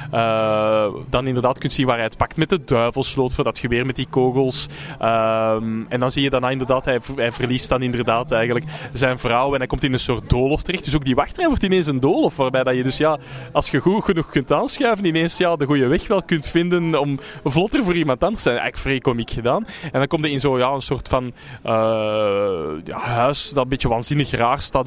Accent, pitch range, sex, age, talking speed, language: Dutch, 125-155 Hz, male, 20-39, 240 wpm, Dutch